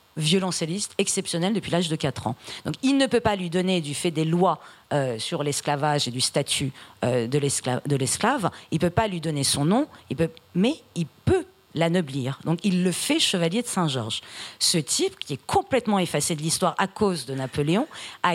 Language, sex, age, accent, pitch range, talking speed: French, female, 40-59, French, 150-200 Hz, 210 wpm